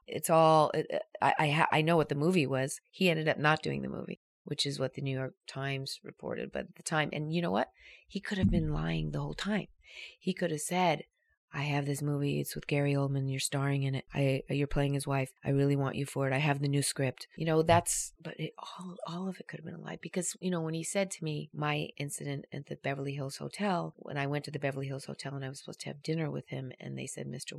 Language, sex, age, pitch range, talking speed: English, female, 40-59, 135-170 Hz, 270 wpm